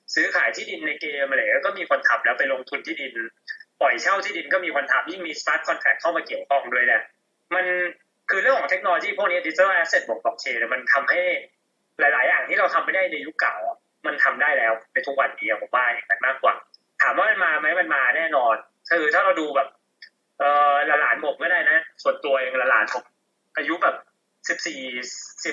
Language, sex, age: Thai, male, 20-39